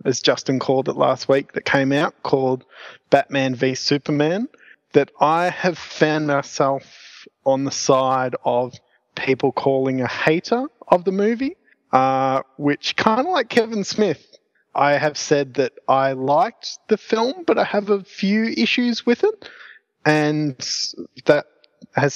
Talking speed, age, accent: 150 wpm, 20-39, Australian